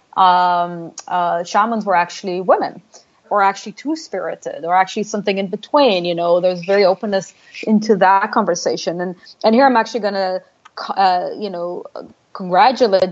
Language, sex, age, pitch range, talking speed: English, female, 20-39, 175-215 Hz, 150 wpm